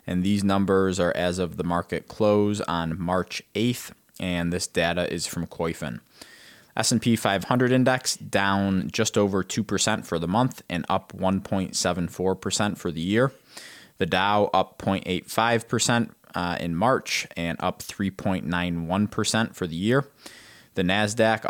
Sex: male